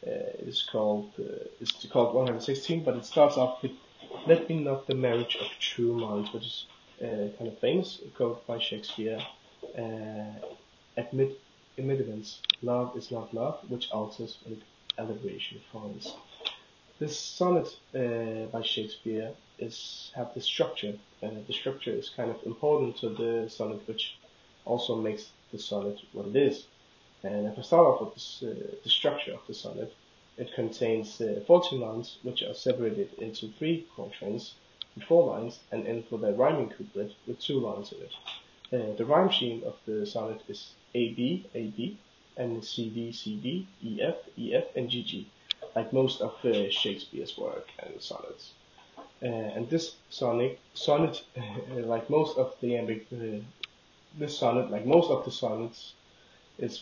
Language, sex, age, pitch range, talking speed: Danish, male, 20-39, 110-135 Hz, 165 wpm